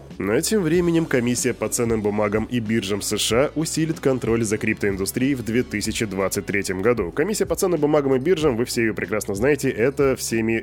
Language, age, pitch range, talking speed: Russian, 20-39, 110-145 Hz, 170 wpm